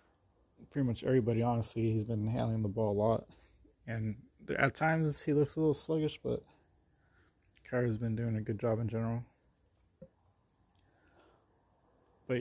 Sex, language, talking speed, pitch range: male, English, 140 wpm, 100-120 Hz